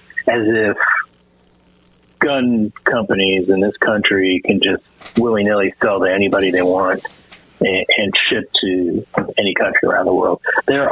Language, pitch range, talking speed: English, 90-115 Hz, 135 wpm